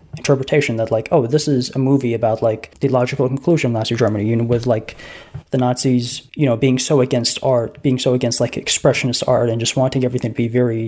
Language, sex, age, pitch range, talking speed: English, male, 20-39, 120-140 Hz, 225 wpm